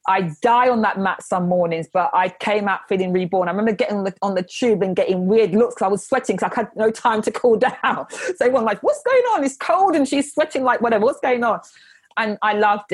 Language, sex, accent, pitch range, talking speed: English, female, British, 190-240 Hz, 265 wpm